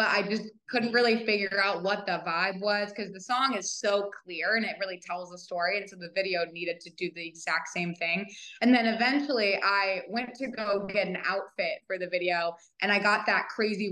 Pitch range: 185-225 Hz